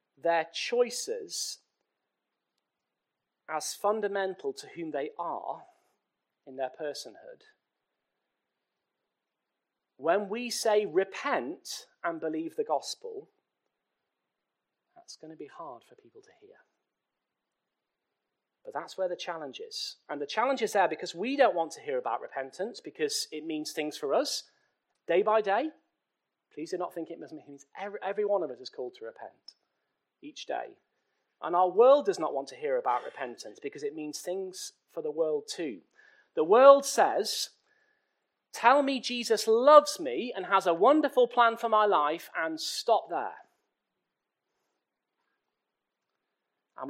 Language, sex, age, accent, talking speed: English, male, 40-59, British, 140 wpm